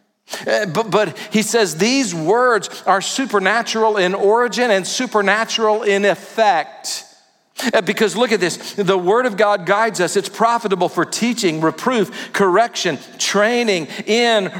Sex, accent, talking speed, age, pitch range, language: male, American, 140 wpm, 50-69, 195-235 Hz, English